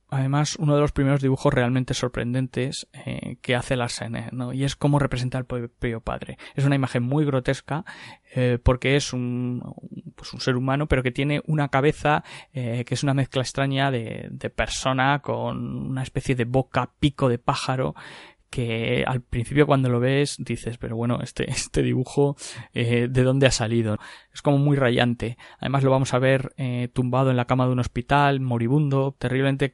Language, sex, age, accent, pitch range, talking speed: Spanish, male, 20-39, Spanish, 125-140 Hz, 185 wpm